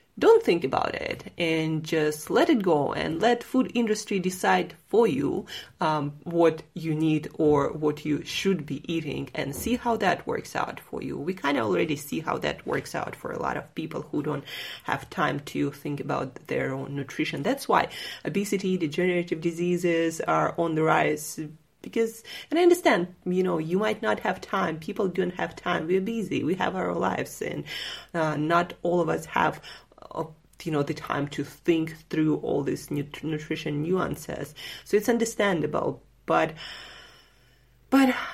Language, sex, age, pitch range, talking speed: English, female, 30-49, 150-190 Hz, 175 wpm